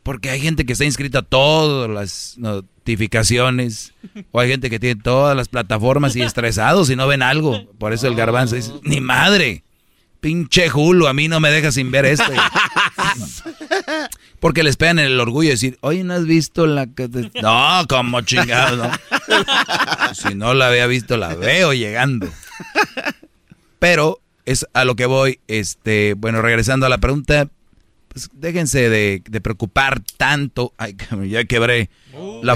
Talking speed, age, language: 170 wpm, 30-49, Spanish